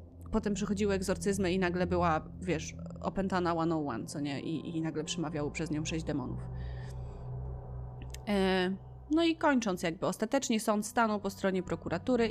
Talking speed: 140 wpm